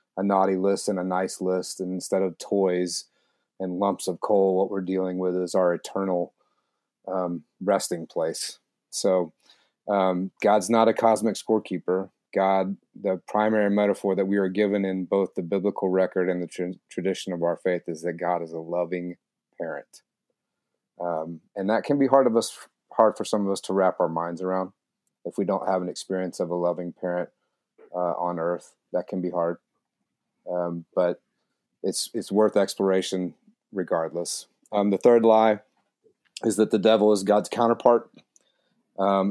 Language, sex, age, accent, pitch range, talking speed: English, male, 30-49, American, 90-105 Hz, 170 wpm